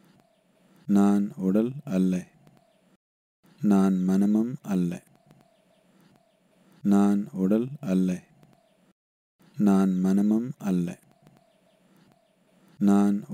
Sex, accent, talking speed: male, native, 60 wpm